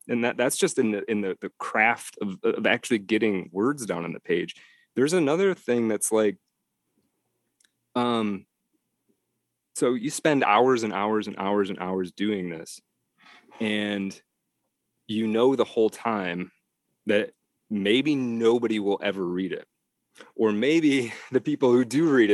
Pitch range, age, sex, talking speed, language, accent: 100-125 Hz, 30-49, male, 155 wpm, English, American